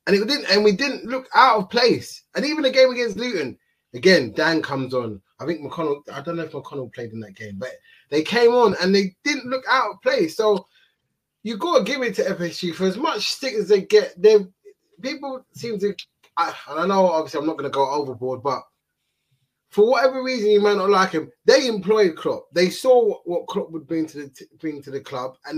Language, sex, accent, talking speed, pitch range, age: English, male, British, 230 wpm, 145-210 Hz, 20-39